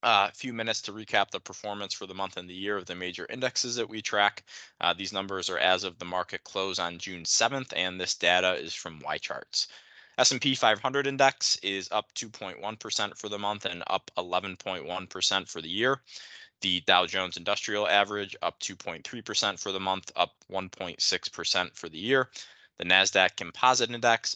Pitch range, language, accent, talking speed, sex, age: 90-110 Hz, English, American, 175 wpm, male, 20-39